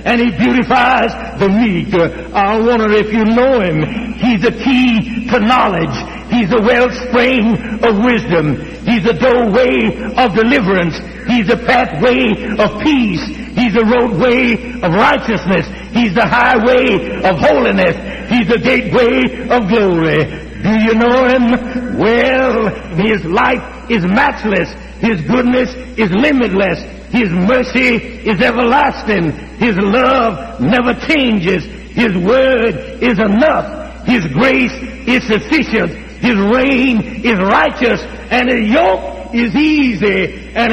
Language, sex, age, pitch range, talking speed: English, male, 60-79, 210-250 Hz, 125 wpm